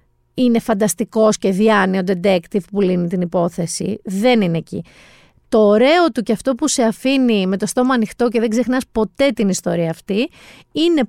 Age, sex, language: 30-49, female, Greek